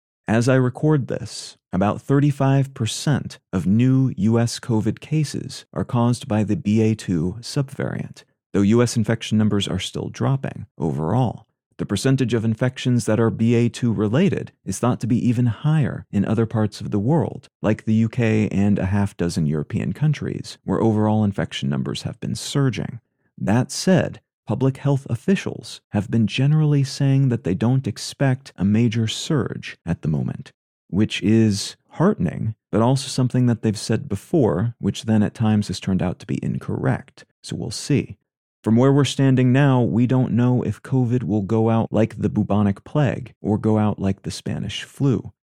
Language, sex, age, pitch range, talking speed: English, male, 30-49, 105-130 Hz, 170 wpm